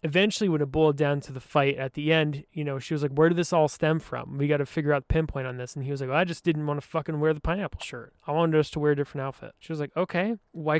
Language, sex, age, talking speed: English, male, 20-39, 320 wpm